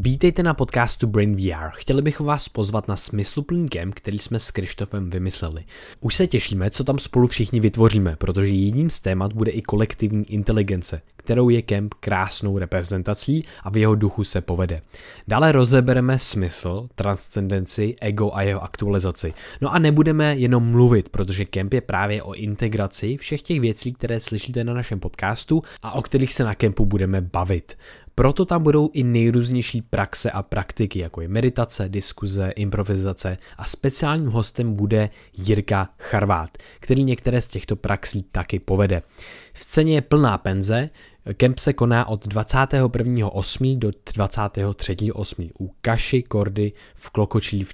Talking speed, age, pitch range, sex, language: 155 wpm, 20-39, 95-125 Hz, male, Czech